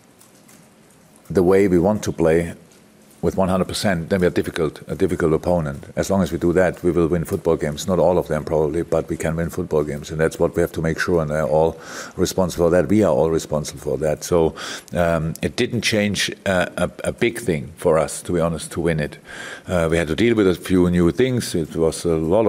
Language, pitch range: English, 85-95 Hz